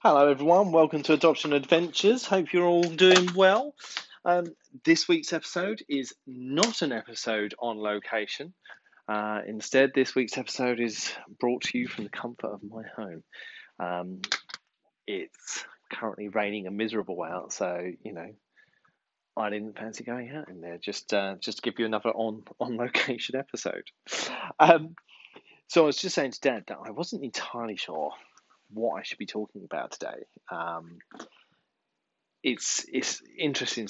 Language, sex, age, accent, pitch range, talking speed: English, male, 30-49, British, 105-155 Hz, 155 wpm